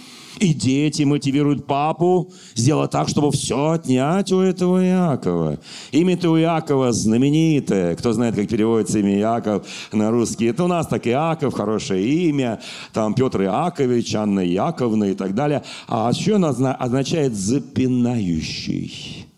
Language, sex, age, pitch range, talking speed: Russian, male, 40-59, 115-155 Hz, 135 wpm